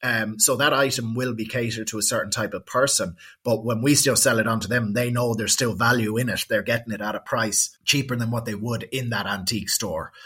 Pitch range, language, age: 110-120 Hz, English, 30-49